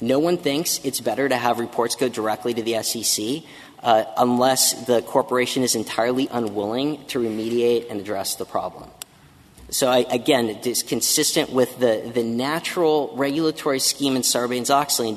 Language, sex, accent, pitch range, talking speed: English, male, American, 120-145 Hz, 160 wpm